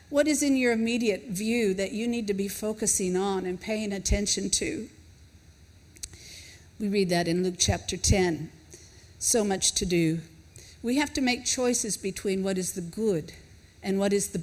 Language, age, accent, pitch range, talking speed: English, 50-69, American, 185-225 Hz, 175 wpm